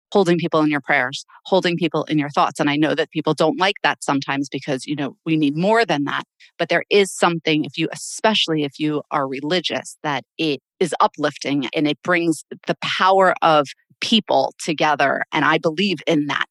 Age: 30-49